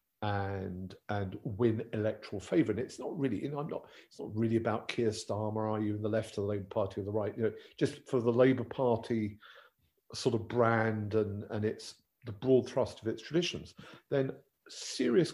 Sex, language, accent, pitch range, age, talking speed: male, English, British, 100-120 Hz, 50-69, 205 wpm